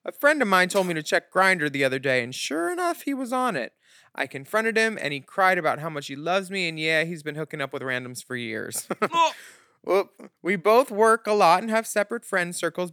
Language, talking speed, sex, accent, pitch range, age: English, 235 wpm, male, American, 150-210 Hz, 20-39